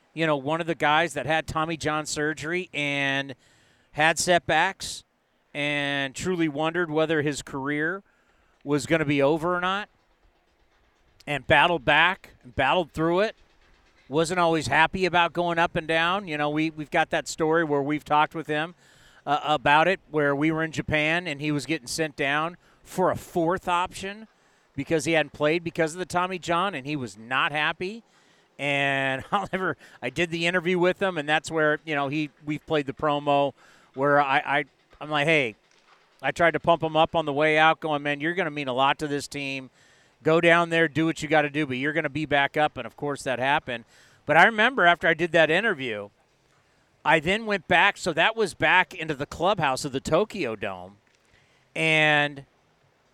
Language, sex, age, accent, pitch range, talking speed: English, male, 40-59, American, 145-170 Hz, 200 wpm